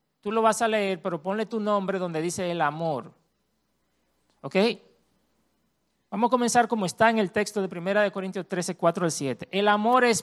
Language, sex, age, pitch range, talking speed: Spanish, male, 40-59, 165-225 Hz, 175 wpm